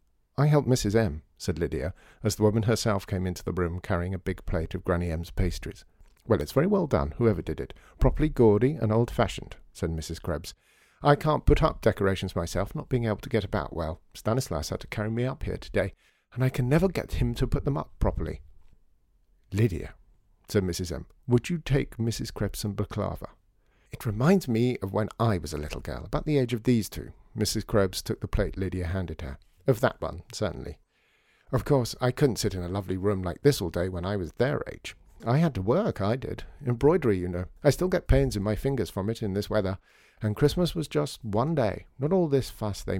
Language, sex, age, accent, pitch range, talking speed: English, male, 50-69, British, 90-125 Hz, 220 wpm